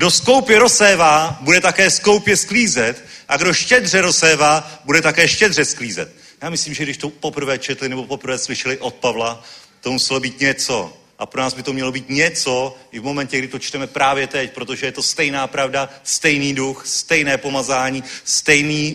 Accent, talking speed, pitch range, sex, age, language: native, 180 wpm, 140-185 Hz, male, 40-59, Czech